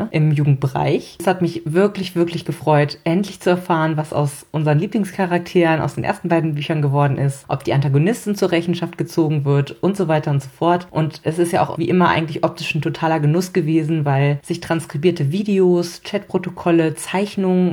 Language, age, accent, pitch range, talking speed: German, 30-49, German, 150-180 Hz, 185 wpm